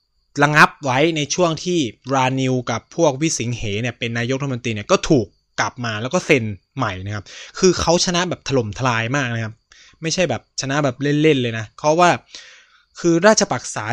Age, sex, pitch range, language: 20-39, male, 115-145 Hz, Thai